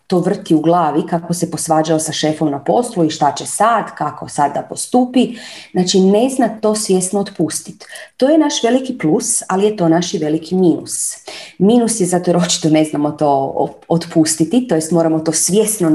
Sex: female